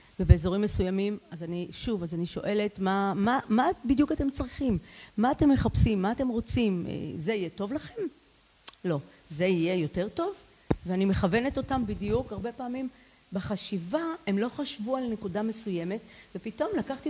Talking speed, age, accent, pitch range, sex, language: 155 wpm, 40-59, native, 185-255 Hz, female, Hebrew